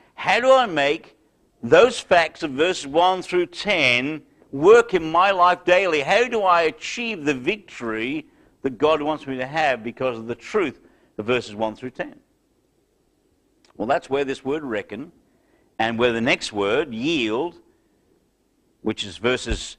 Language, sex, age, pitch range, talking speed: English, male, 50-69, 120-180 Hz, 160 wpm